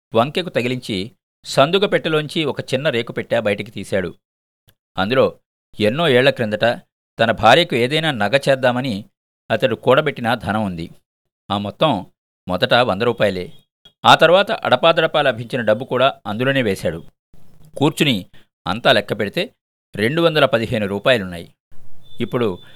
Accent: native